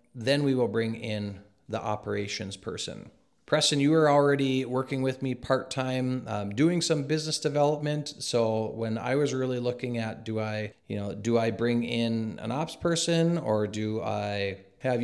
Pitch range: 105-130 Hz